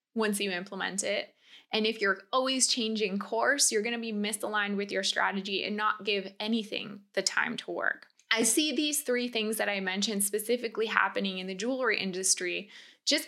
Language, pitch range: English, 195-235 Hz